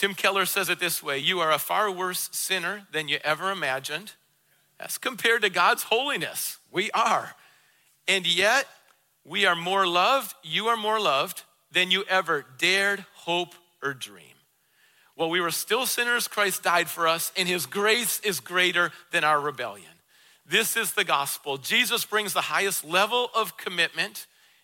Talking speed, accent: 165 wpm, American